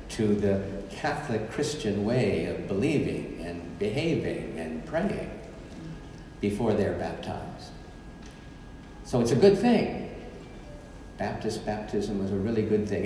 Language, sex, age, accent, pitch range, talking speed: English, male, 60-79, American, 95-135 Hz, 120 wpm